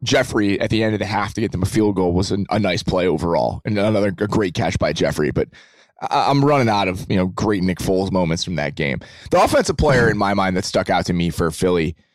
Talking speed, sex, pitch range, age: 265 wpm, male, 95-120 Hz, 20-39